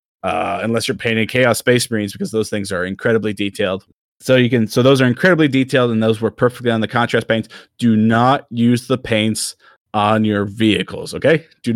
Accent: American